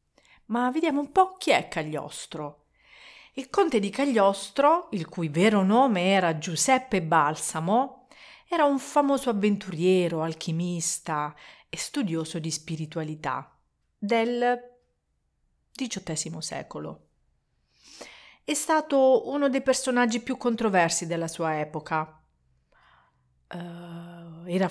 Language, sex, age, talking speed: Italian, female, 40-59, 100 wpm